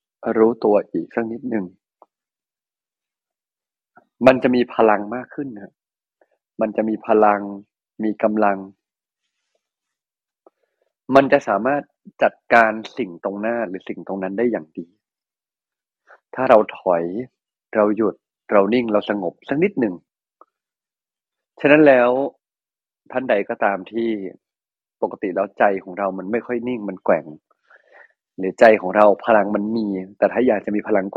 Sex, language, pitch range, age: male, Thai, 100-125 Hz, 20-39